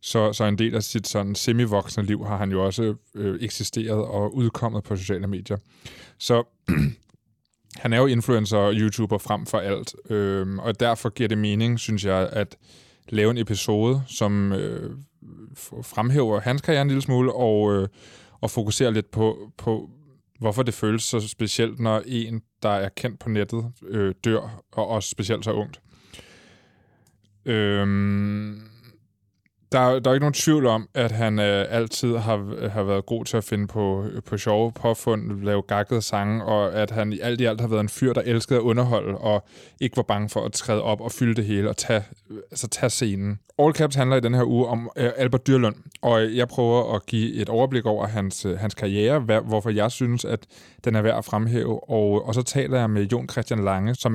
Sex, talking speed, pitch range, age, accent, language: male, 195 wpm, 105-120 Hz, 20-39, native, Danish